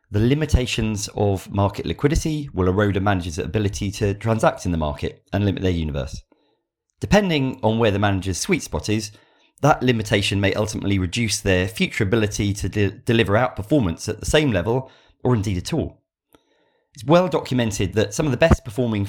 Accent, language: British, English